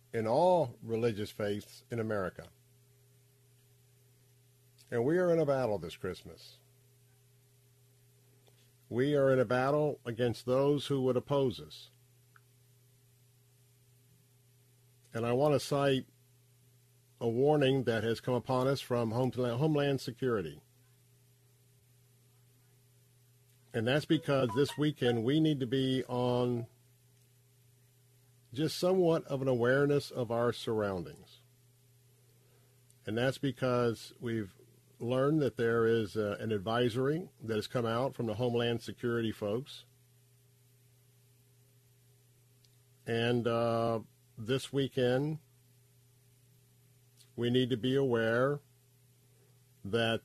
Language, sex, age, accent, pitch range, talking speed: English, male, 50-69, American, 120-130 Hz, 105 wpm